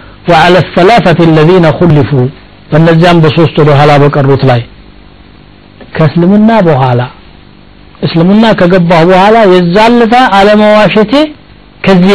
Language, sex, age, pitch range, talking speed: Amharic, male, 60-79, 135-180 Hz, 90 wpm